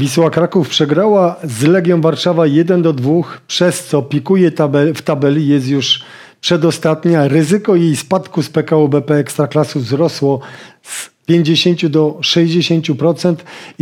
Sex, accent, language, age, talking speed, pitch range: male, native, Polish, 40-59, 130 wpm, 150-170 Hz